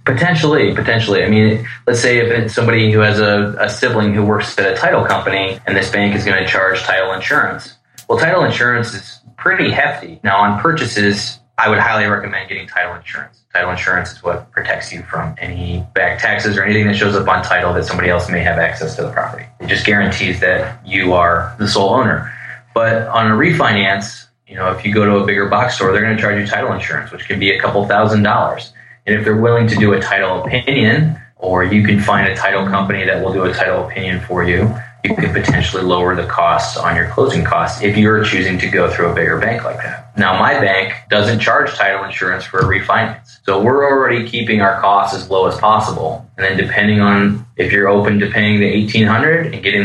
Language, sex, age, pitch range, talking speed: English, male, 20-39, 95-110 Hz, 225 wpm